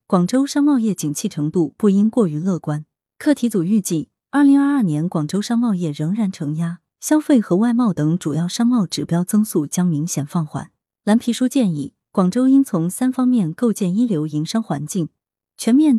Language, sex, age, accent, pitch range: Chinese, female, 20-39, native, 160-230 Hz